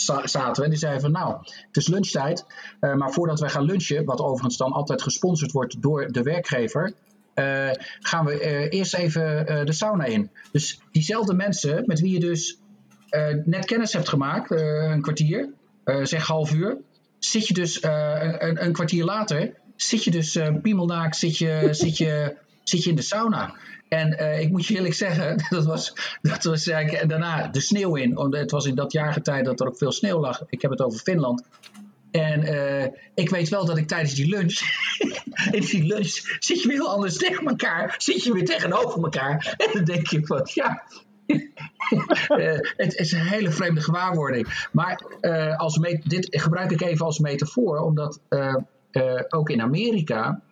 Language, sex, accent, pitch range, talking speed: English, male, Dutch, 150-185 Hz, 190 wpm